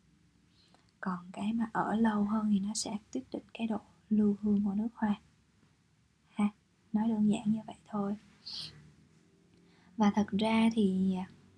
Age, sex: 20-39, female